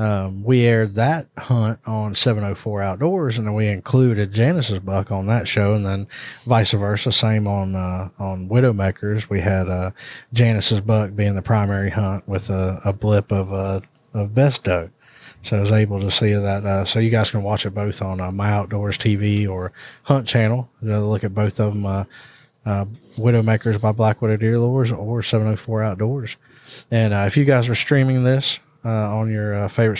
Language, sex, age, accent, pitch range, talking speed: English, male, 20-39, American, 100-120 Hz, 195 wpm